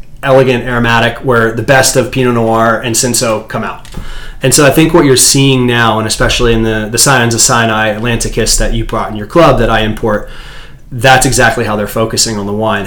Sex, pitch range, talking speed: male, 110-130 Hz, 210 wpm